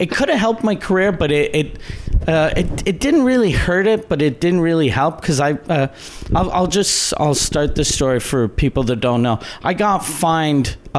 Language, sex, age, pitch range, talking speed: English, male, 40-59, 120-150 Hz, 215 wpm